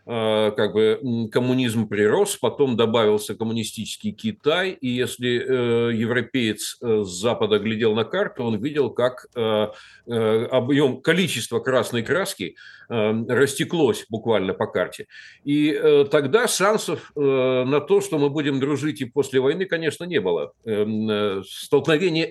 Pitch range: 115-175 Hz